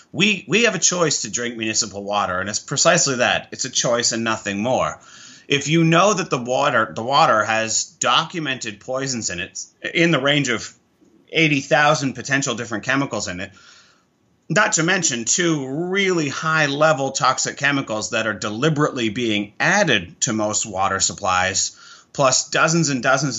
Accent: American